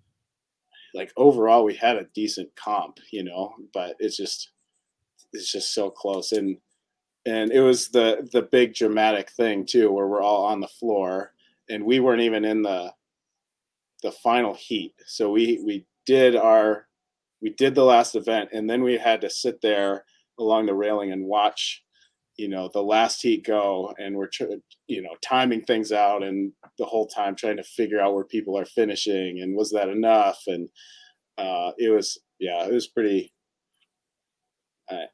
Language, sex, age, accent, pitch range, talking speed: English, male, 30-49, American, 100-170 Hz, 170 wpm